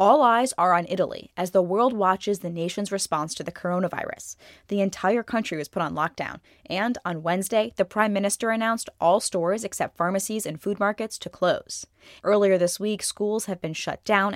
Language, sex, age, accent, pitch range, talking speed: English, female, 10-29, American, 175-205 Hz, 190 wpm